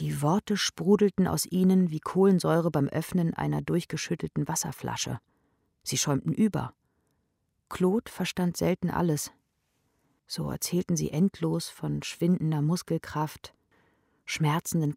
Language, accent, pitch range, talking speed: German, German, 140-185 Hz, 110 wpm